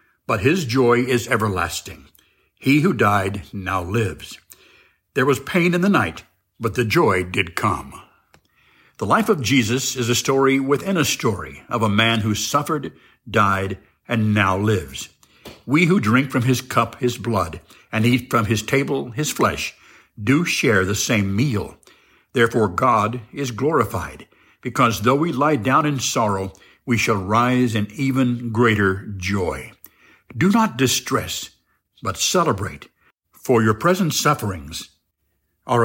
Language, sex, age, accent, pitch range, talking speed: English, male, 60-79, American, 95-135 Hz, 145 wpm